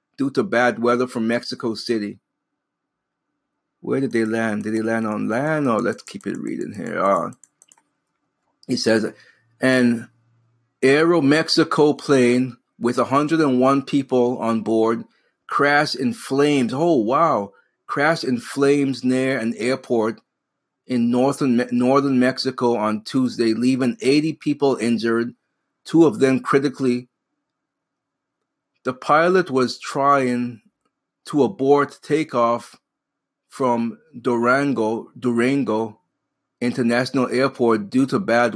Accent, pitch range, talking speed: American, 115-135 Hz, 115 wpm